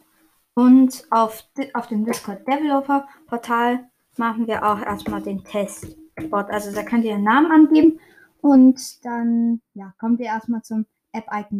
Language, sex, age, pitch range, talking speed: German, female, 20-39, 215-270 Hz, 145 wpm